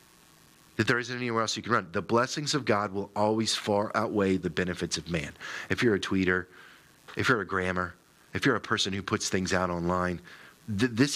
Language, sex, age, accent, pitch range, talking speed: English, male, 40-59, American, 95-115 Hz, 210 wpm